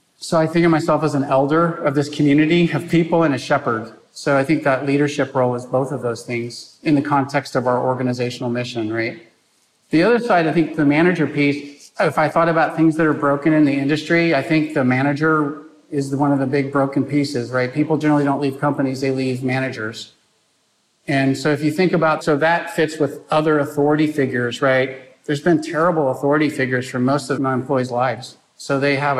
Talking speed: 210 wpm